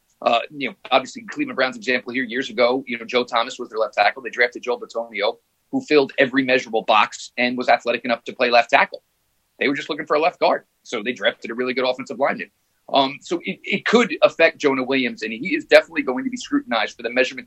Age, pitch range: 30-49, 130-175 Hz